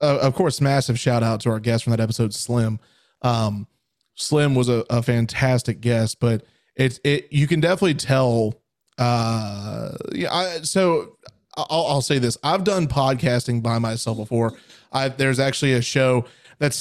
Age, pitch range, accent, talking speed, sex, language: 30-49, 120-145 Hz, American, 170 wpm, male, English